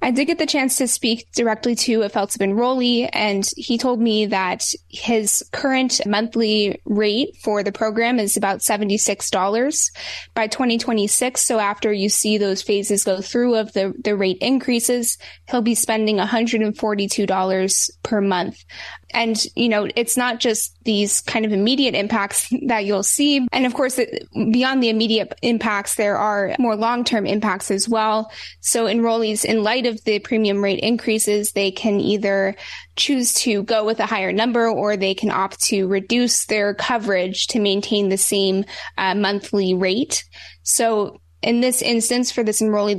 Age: 10-29